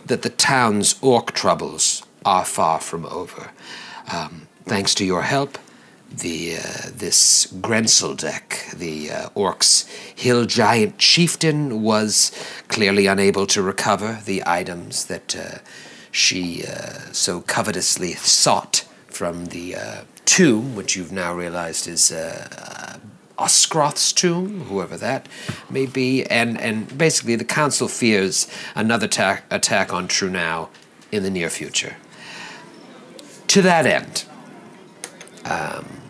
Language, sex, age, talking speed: English, male, 60-79, 120 wpm